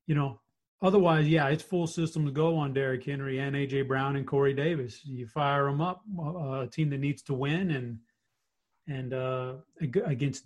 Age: 30-49